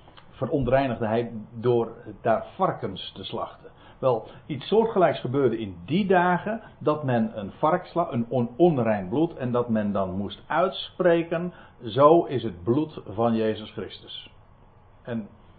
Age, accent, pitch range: 60-79, Dutch, 110-140 Hz